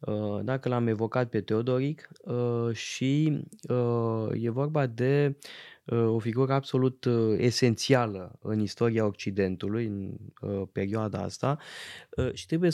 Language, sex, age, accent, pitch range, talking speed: Romanian, male, 20-39, native, 110-140 Hz, 100 wpm